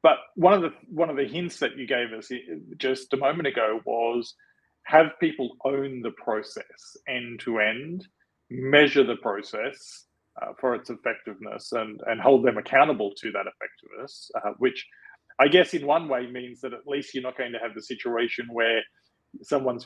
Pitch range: 120-150 Hz